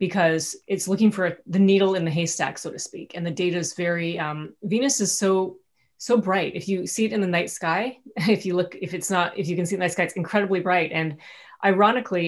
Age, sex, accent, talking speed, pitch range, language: 30-49, female, American, 245 wpm, 170-205 Hz, English